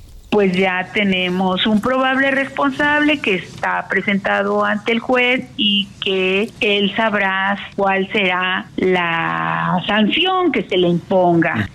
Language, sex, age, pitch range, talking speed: Spanish, female, 50-69, 175-235 Hz, 125 wpm